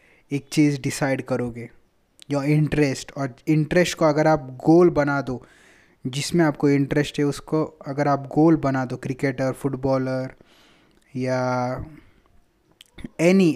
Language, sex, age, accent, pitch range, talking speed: English, male, 20-39, Indian, 135-165 Hz, 125 wpm